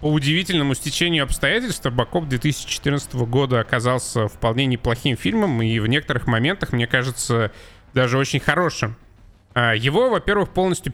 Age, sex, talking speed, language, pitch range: 20-39, male, 125 wpm, Russian, 115-135 Hz